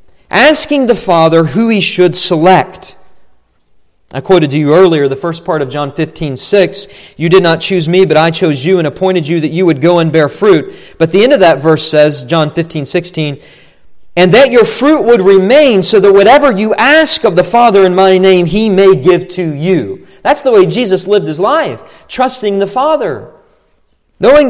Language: English